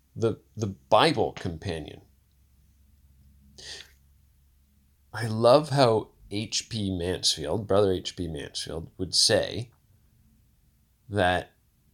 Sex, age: male, 30-49